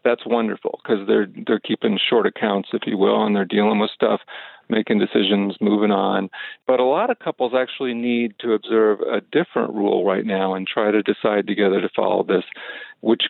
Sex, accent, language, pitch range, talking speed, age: male, American, English, 105-135 Hz, 195 wpm, 50-69